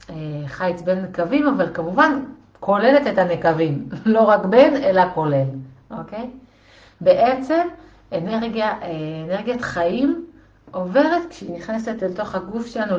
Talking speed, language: 115 wpm, Hebrew